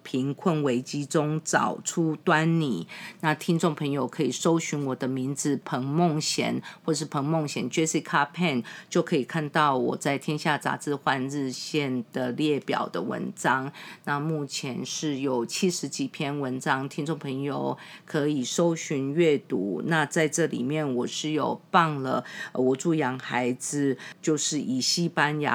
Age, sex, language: 50-69, female, English